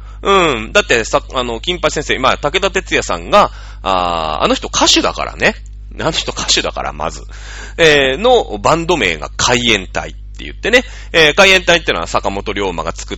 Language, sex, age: Japanese, male, 30-49